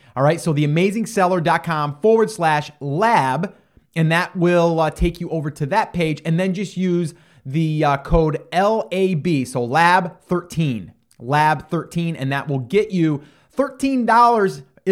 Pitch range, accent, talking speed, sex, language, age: 135-175 Hz, American, 135 wpm, male, English, 30-49